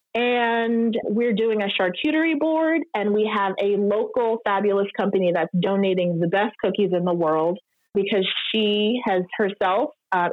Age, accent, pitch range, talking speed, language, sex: 30-49, American, 190-245 Hz, 150 wpm, English, female